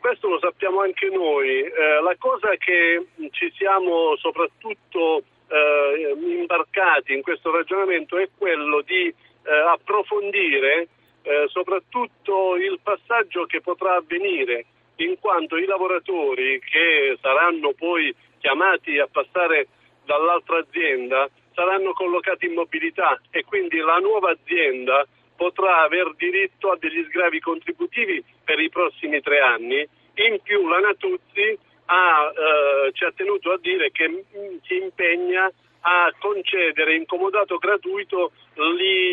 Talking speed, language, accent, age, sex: 125 wpm, Italian, native, 50-69, male